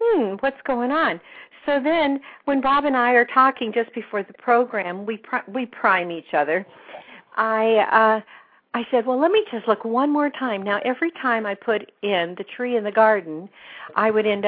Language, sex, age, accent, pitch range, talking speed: English, female, 50-69, American, 180-240 Hz, 200 wpm